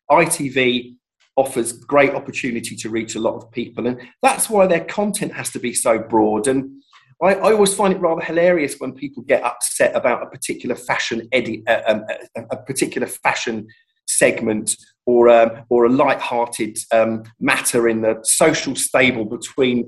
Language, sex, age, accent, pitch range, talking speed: English, male, 40-59, British, 120-170 Hz, 170 wpm